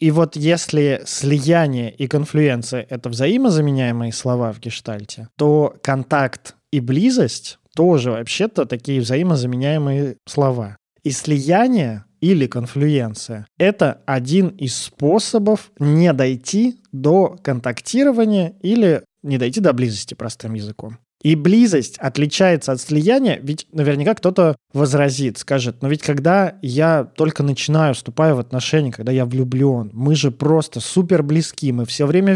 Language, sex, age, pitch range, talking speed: Russian, male, 20-39, 125-165 Hz, 130 wpm